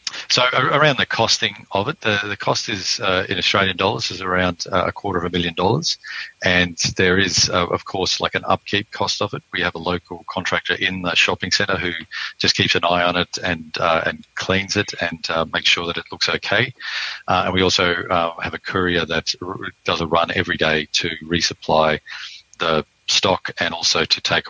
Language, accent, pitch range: English, Australian, 85-90 Hz